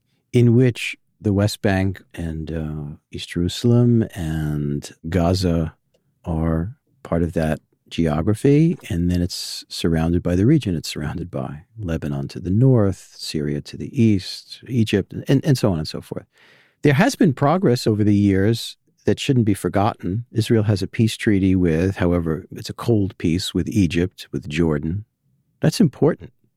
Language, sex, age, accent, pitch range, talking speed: English, male, 50-69, American, 90-125 Hz, 160 wpm